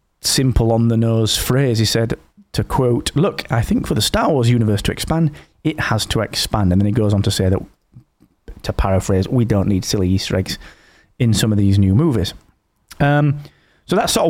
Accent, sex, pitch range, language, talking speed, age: British, male, 105-140 Hz, English, 205 wpm, 30-49